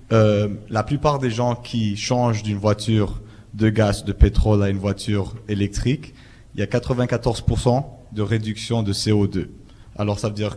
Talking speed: 165 wpm